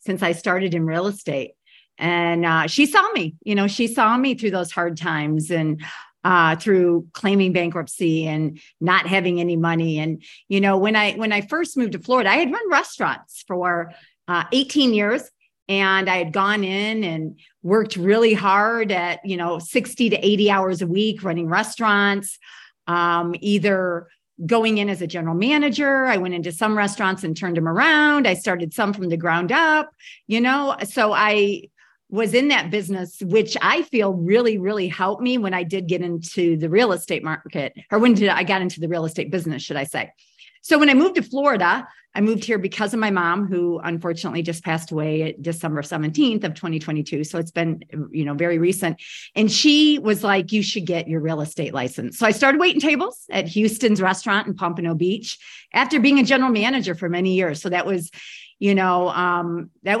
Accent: American